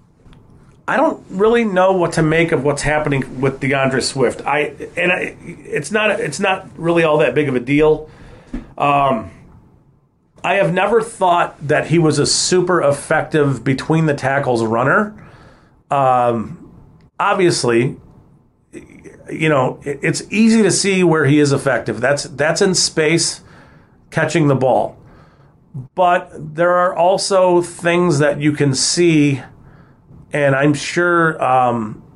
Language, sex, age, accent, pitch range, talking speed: English, male, 40-59, American, 130-170 Hz, 140 wpm